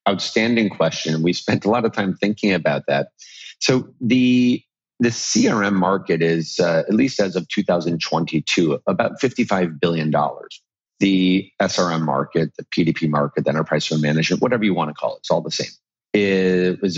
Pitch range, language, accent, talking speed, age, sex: 80-105 Hz, English, American, 165 wpm, 40-59, male